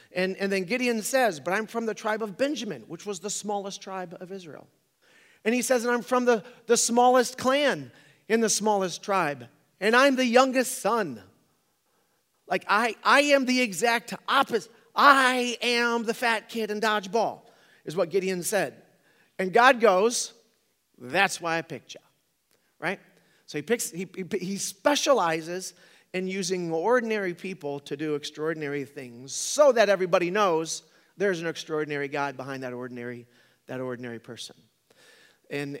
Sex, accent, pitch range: male, American, 130-205 Hz